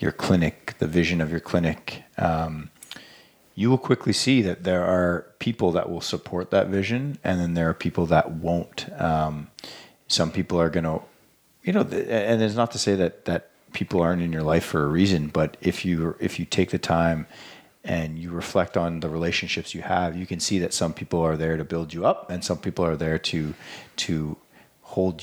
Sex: male